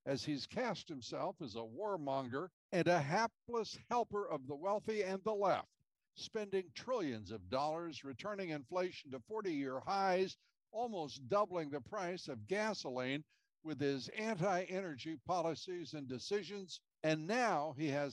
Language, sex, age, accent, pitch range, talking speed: English, male, 60-79, American, 140-195 Hz, 140 wpm